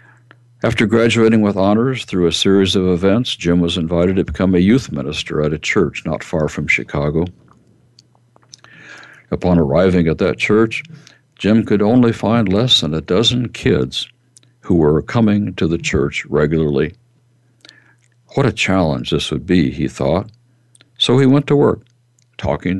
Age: 60-79